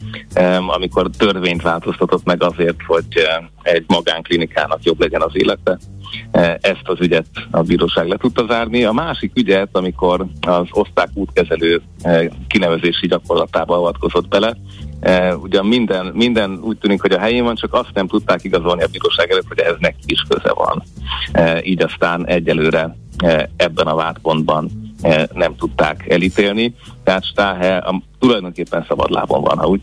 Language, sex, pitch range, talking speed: Hungarian, male, 85-120 Hz, 140 wpm